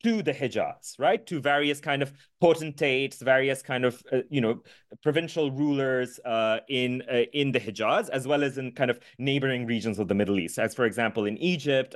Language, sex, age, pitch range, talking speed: English, male, 30-49, 120-155 Hz, 200 wpm